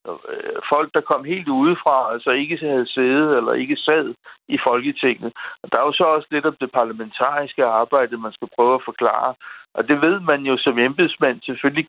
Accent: native